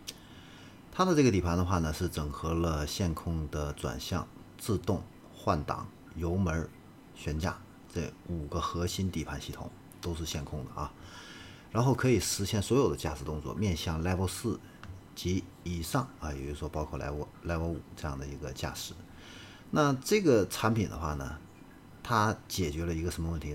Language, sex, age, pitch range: Chinese, male, 50-69, 75-95 Hz